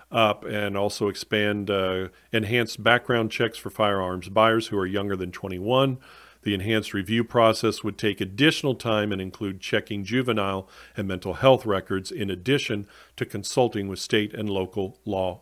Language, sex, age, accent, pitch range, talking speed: English, male, 50-69, American, 95-125 Hz, 160 wpm